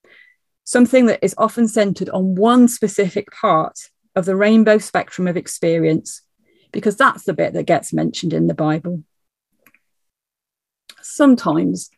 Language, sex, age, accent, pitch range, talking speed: English, female, 40-59, British, 170-215 Hz, 130 wpm